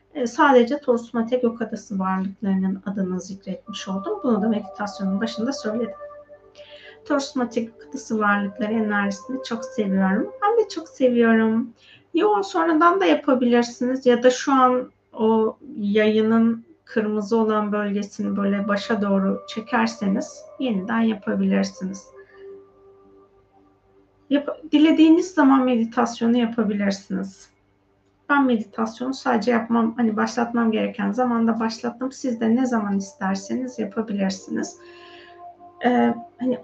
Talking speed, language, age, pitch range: 105 wpm, Turkish, 30-49, 205-265 Hz